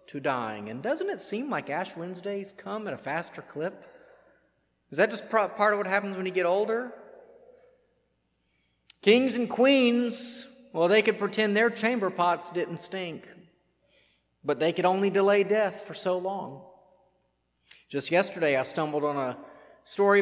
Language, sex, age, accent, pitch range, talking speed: English, male, 40-59, American, 150-210 Hz, 155 wpm